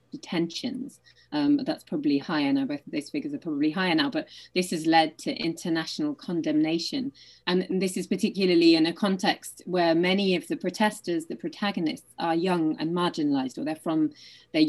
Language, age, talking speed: English, 30-49, 175 wpm